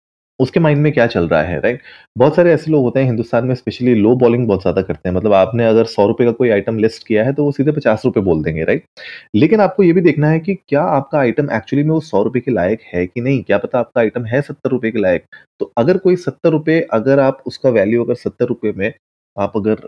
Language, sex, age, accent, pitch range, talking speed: Hindi, male, 30-49, native, 105-145 Hz, 250 wpm